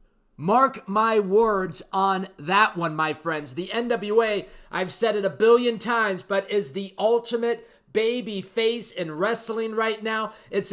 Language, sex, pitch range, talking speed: English, male, 190-240 Hz, 150 wpm